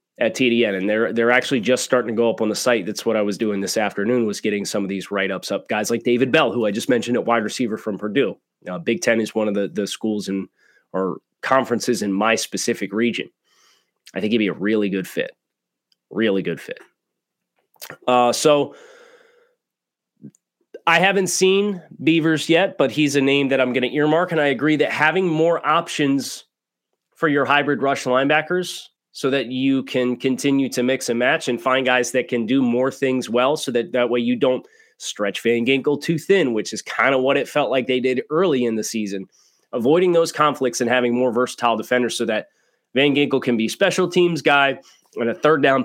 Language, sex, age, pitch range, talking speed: English, male, 30-49, 115-145 Hz, 210 wpm